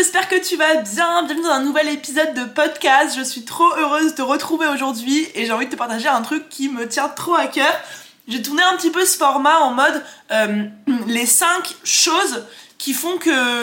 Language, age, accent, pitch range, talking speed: French, 20-39, French, 230-305 Hz, 220 wpm